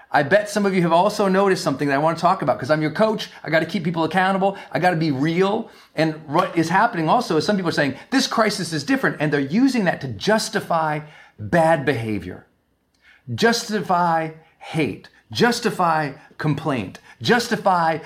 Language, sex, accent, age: English, male, American, 40-59